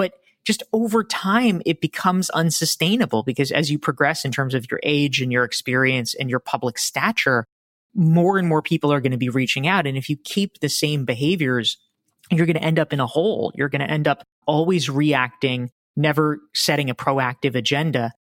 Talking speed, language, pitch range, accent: 195 wpm, English, 130-170 Hz, American